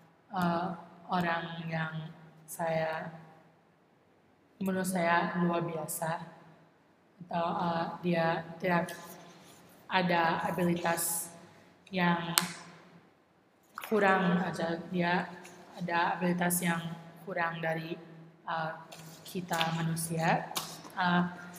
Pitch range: 165-185 Hz